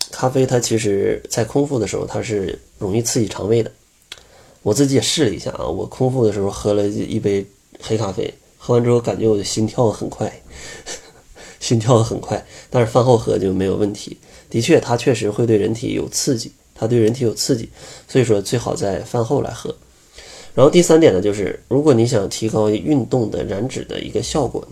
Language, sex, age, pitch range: Chinese, male, 20-39, 105-130 Hz